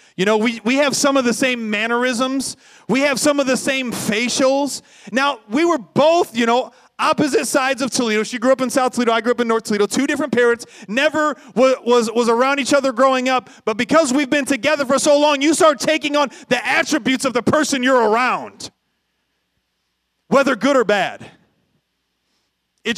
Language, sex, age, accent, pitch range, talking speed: English, male, 30-49, American, 185-260 Hz, 195 wpm